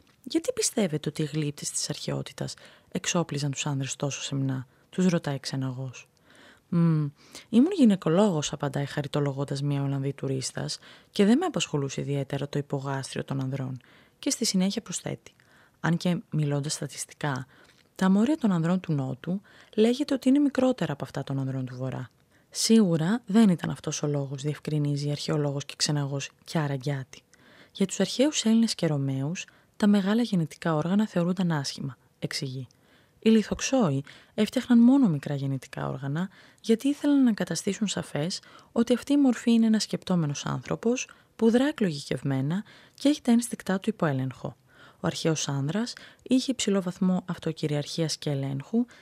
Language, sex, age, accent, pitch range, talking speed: Greek, female, 20-39, native, 140-215 Hz, 145 wpm